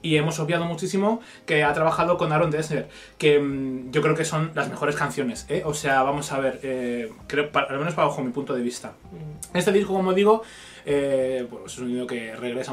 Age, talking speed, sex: 20-39, 210 wpm, male